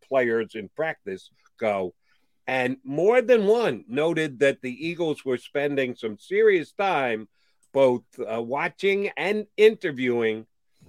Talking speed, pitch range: 120 wpm, 115-170 Hz